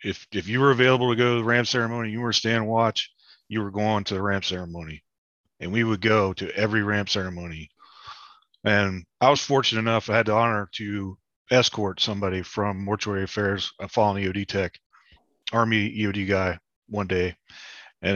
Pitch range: 95-115 Hz